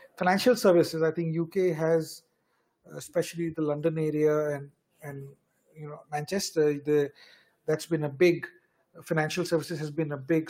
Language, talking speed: English, 150 wpm